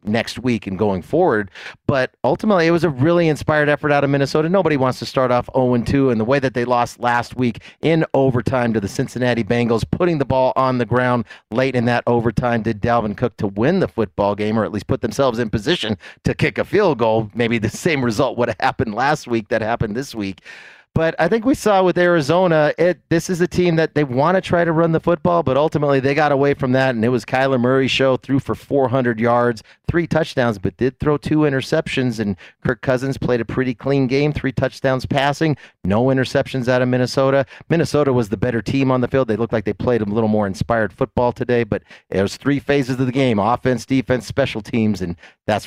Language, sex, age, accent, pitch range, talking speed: English, male, 30-49, American, 110-140 Hz, 230 wpm